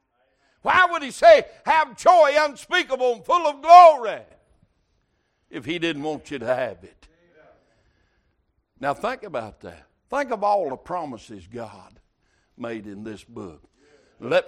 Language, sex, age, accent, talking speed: English, male, 60-79, American, 140 wpm